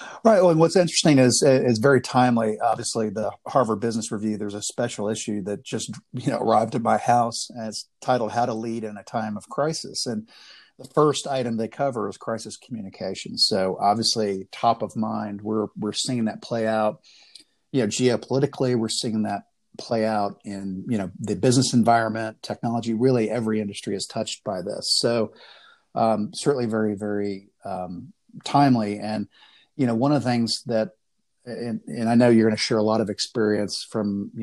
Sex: male